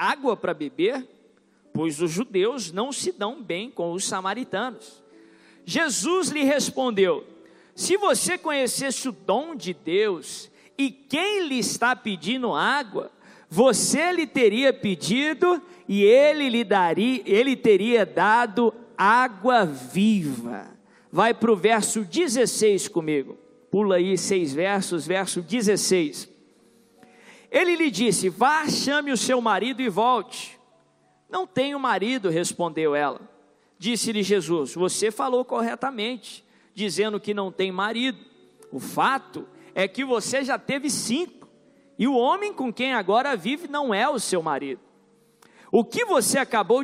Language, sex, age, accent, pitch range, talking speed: Portuguese, male, 50-69, Brazilian, 200-270 Hz, 130 wpm